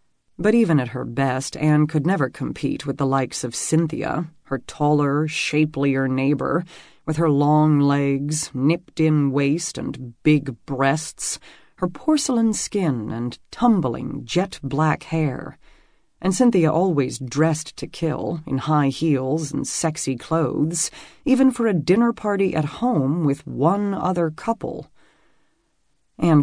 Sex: female